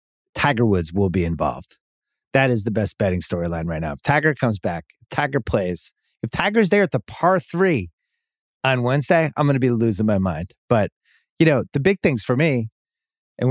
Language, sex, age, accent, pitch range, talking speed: English, male, 30-49, American, 100-140 Hz, 195 wpm